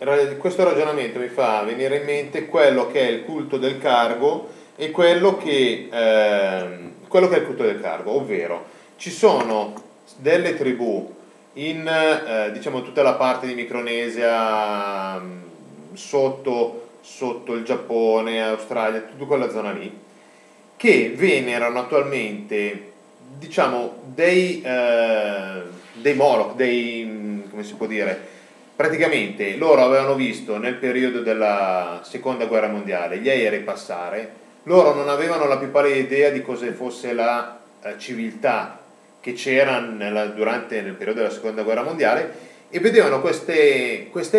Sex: male